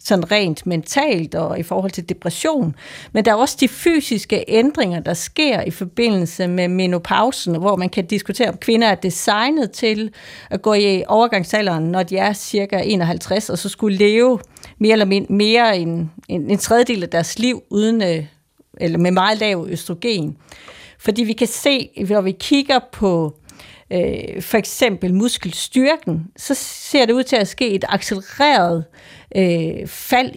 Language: Danish